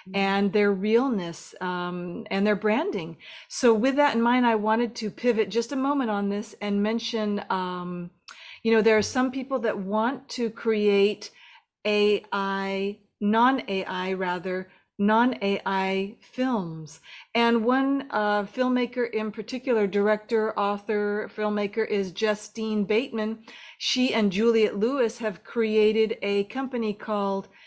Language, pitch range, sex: English, 200-235 Hz, female